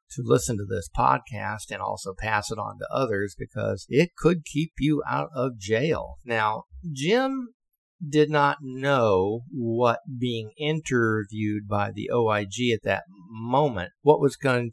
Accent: American